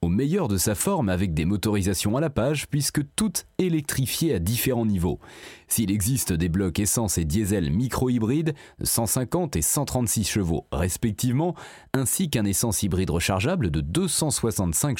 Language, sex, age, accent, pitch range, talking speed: French, male, 30-49, French, 100-155 Hz, 150 wpm